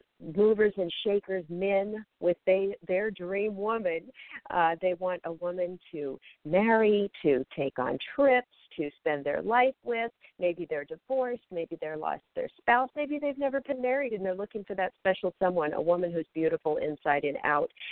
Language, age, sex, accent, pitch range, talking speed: English, 50-69, female, American, 155-205 Hz, 170 wpm